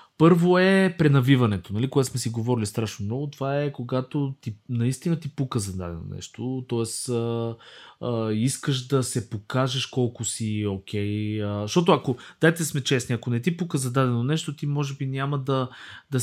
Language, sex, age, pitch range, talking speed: Bulgarian, male, 20-39, 105-135 Hz, 180 wpm